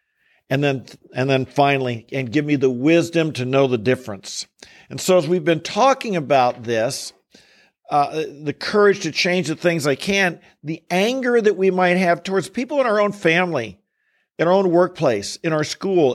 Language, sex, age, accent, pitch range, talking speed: English, male, 50-69, American, 140-180 Hz, 185 wpm